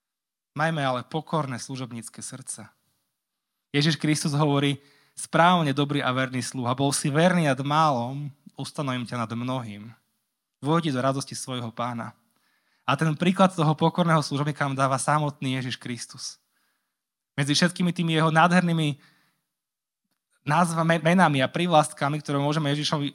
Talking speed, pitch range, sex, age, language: 130 wpm, 125-160 Hz, male, 20-39, Slovak